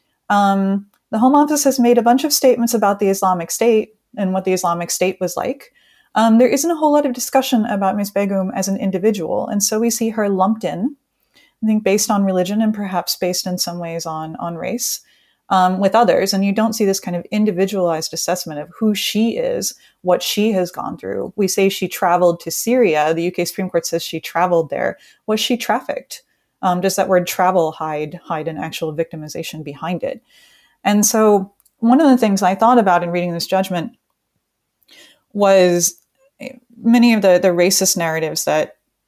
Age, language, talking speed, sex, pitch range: 30-49, English, 195 wpm, female, 170-220 Hz